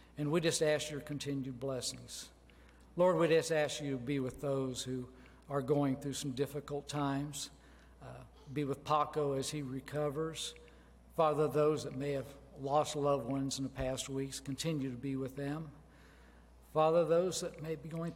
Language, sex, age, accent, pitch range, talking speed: English, male, 60-79, American, 130-155 Hz, 175 wpm